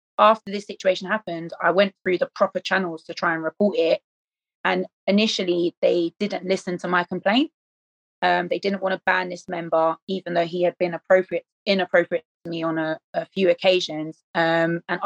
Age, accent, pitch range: 20-39, British, 170-195 Hz